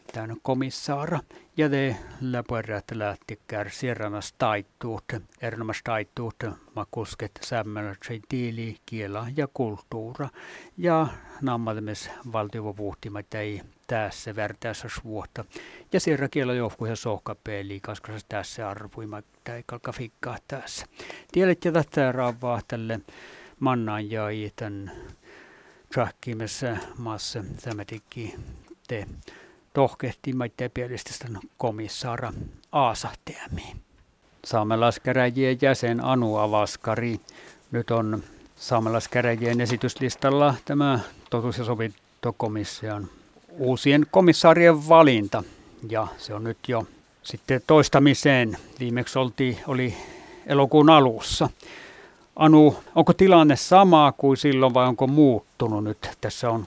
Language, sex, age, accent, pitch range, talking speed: Finnish, male, 60-79, native, 110-135 Hz, 95 wpm